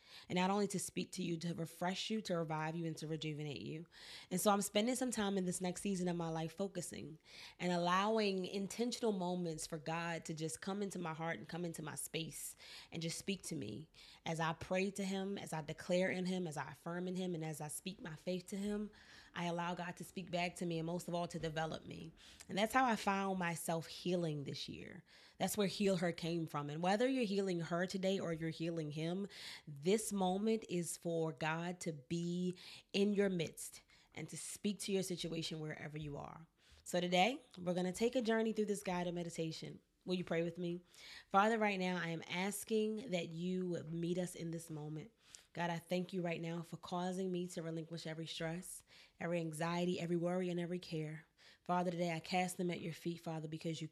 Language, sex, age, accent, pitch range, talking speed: English, female, 20-39, American, 165-185 Hz, 220 wpm